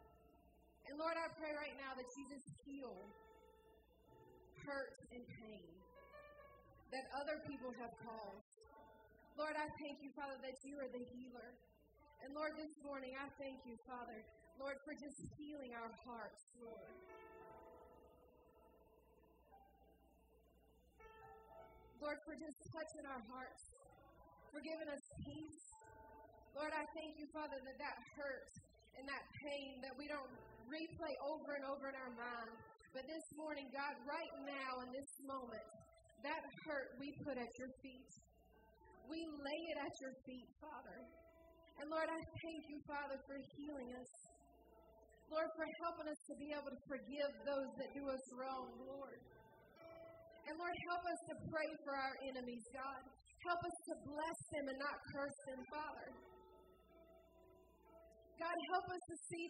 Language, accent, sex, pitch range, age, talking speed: English, American, female, 260-310 Hz, 20-39, 145 wpm